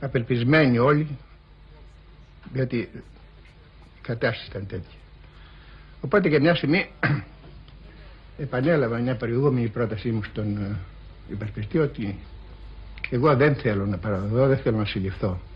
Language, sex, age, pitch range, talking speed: Greek, male, 60-79, 95-130 Hz, 110 wpm